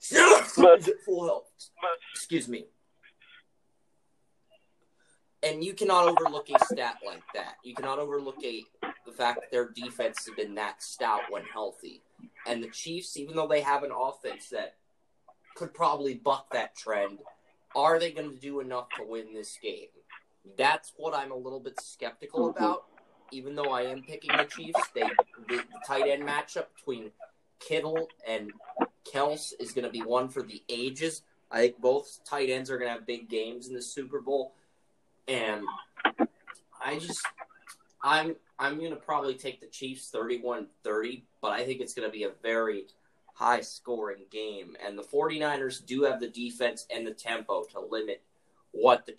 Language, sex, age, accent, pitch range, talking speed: English, male, 20-39, American, 120-160 Hz, 165 wpm